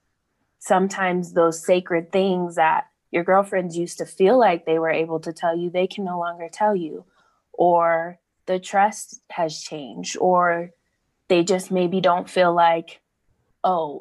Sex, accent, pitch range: female, American, 165-200 Hz